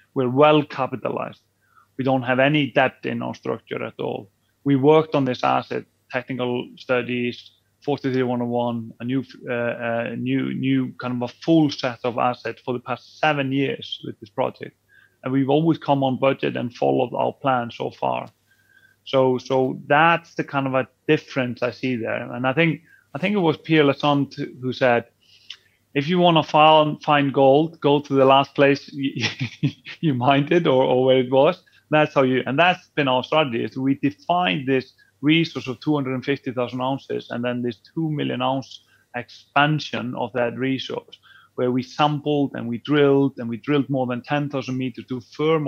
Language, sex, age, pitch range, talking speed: English, male, 30-49, 125-145 Hz, 180 wpm